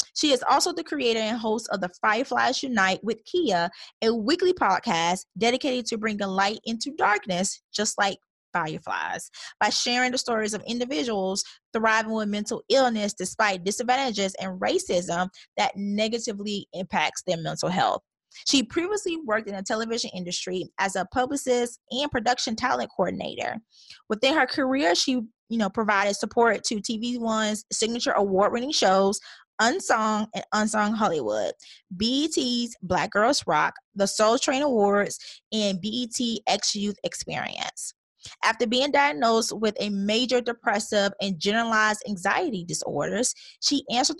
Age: 20-39